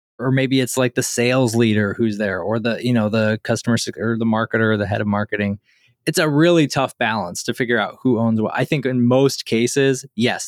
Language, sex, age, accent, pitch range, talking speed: English, male, 20-39, American, 110-135 Hz, 235 wpm